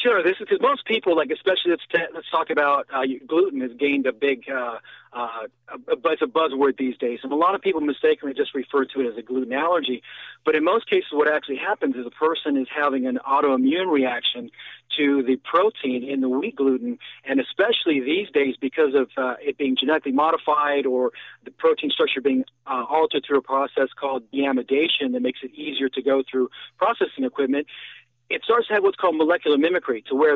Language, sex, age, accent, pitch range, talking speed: English, male, 40-59, American, 135-185 Hz, 210 wpm